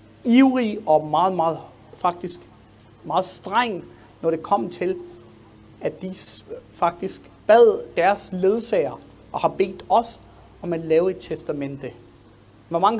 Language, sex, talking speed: Danish, male, 130 wpm